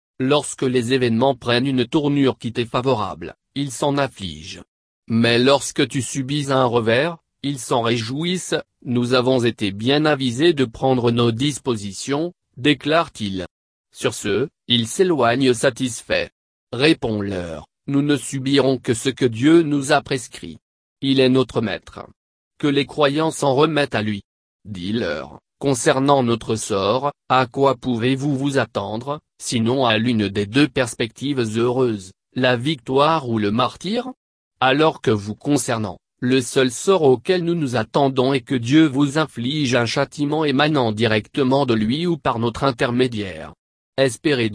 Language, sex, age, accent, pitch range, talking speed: French, male, 40-59, French, 115-140 Hz, 145 wpm